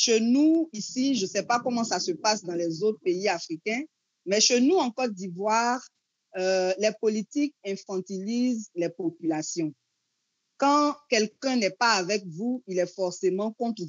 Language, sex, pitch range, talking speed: French, female, 185-260 Hz, 165 wpm